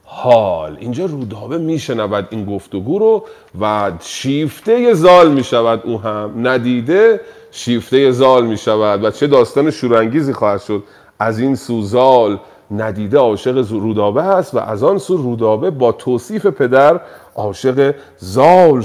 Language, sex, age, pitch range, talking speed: Persian, male, 40-59, 115-175 Hz, 135 wpm